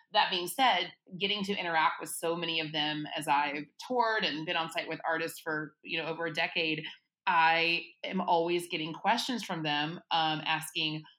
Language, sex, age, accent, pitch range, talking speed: English, female, 30-49, American, 165-205 Hz, 190 wpm